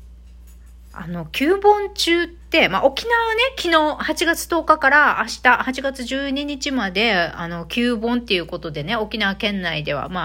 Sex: female